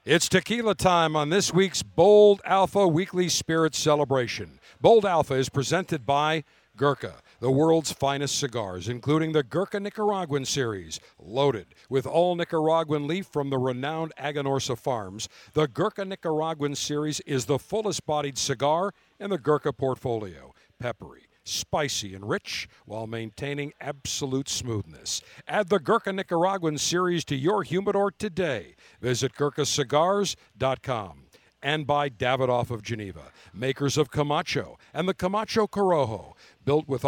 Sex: male